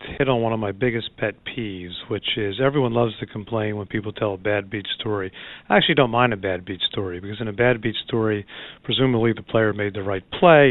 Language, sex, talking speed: English, male, 235 wpm